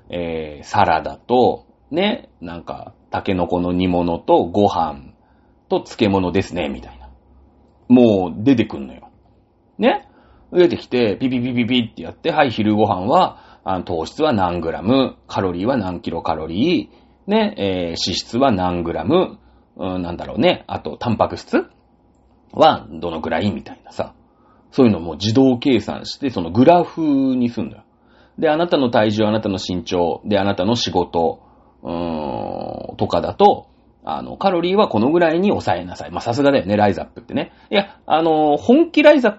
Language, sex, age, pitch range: Japanese, male, 40-59, 90-130 Hz